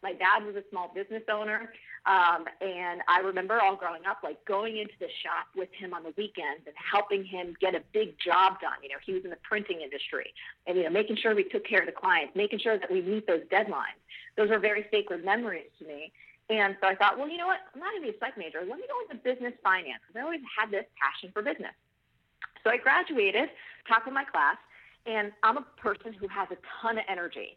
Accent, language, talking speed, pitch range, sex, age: American, English, 245 wpm, 180-270 Hz, female, 40-59